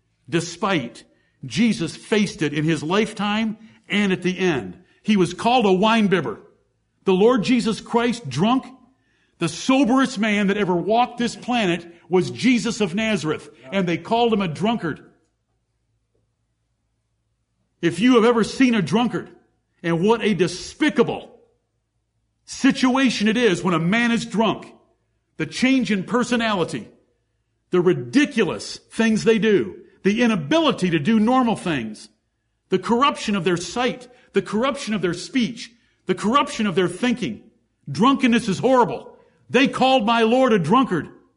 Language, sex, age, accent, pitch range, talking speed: English, male, 50-69, American, 165-230 Hz, 140 wpm